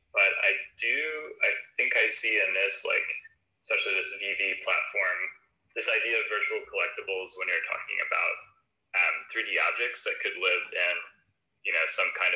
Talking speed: 165 wpm